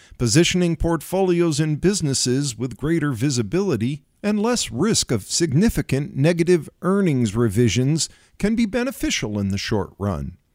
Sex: male